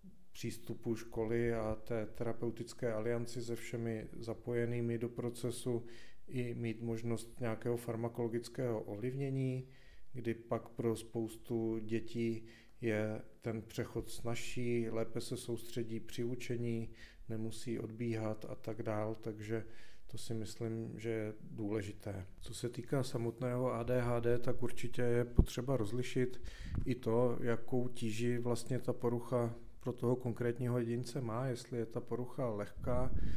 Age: 40-59